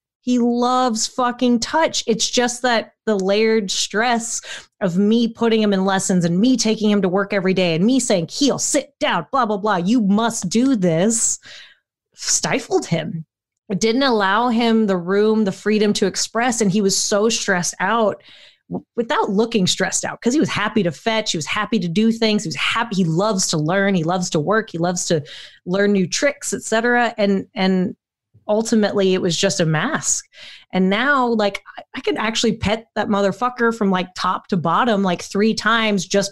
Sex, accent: female, American